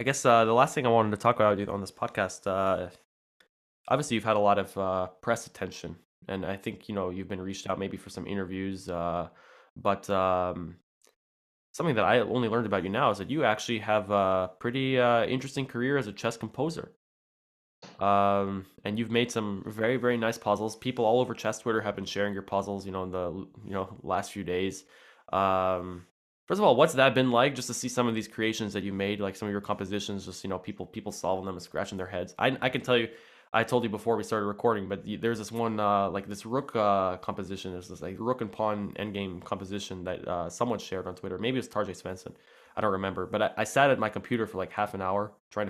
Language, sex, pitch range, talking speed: English, male, 95-115 Hz, 240 wpm